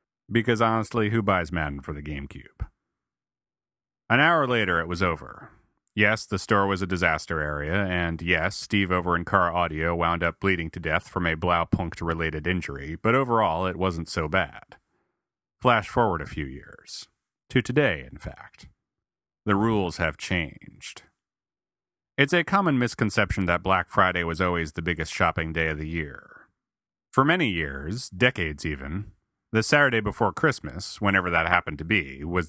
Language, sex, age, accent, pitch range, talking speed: English, male, 30-49, American, 85-110 Hz, 160 wpm